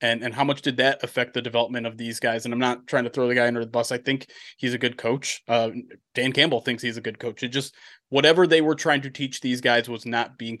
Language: English